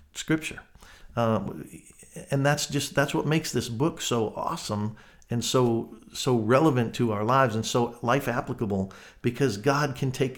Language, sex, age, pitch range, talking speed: English, male, 50-69, 110-135 Hz, 155 wpm